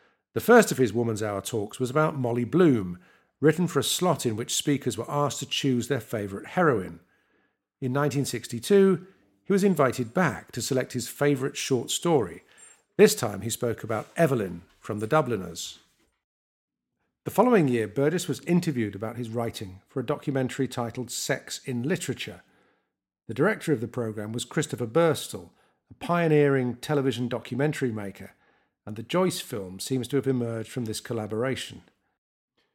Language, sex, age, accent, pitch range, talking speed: English, male, 50-69, British, 115-145 Hz, 160 wpm